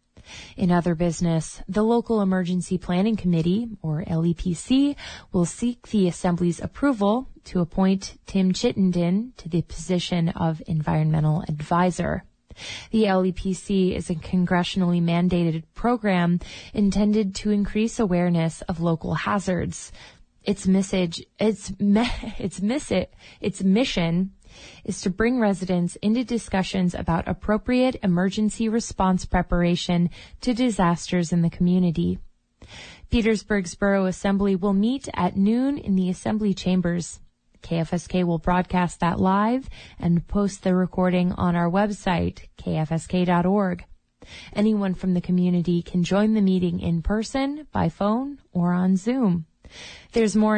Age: 20-39